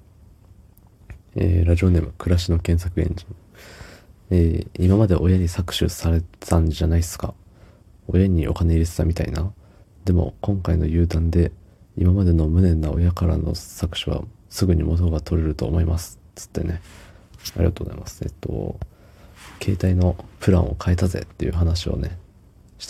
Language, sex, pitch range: Japanese, male, 85-100 Hz